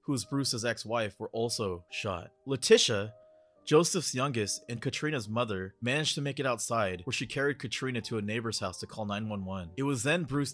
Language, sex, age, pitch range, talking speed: English, male, 20-39, 100-135 Hz, 180 wpm